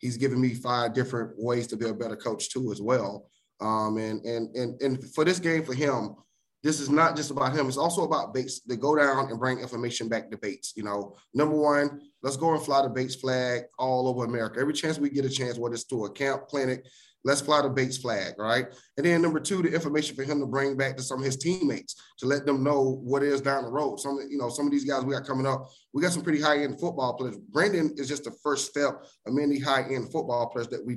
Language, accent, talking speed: English, American, 250 wpm